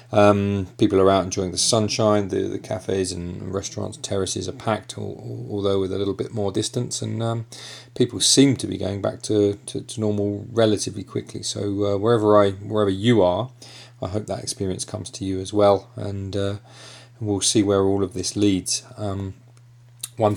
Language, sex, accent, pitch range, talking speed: English, male, British, 95-115 Hz, 195 wpm